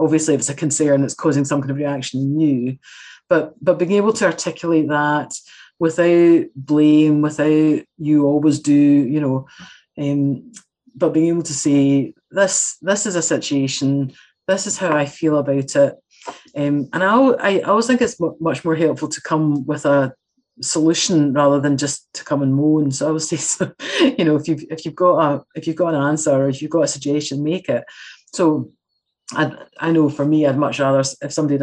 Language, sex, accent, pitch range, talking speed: English, female, British, 145-170 Hz, 200 wpm